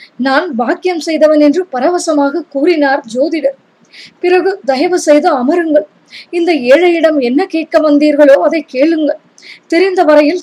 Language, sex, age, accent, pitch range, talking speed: Tamil, female, 20-39, native, 285-330 Hz, 120 wpm